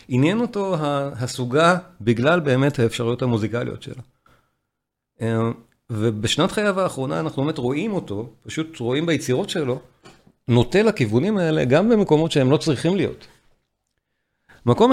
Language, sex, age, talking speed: Hebrew, male, 50-69, 115 wpm